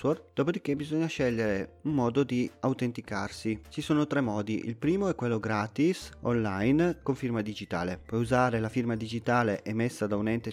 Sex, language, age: male, Italian, 30-49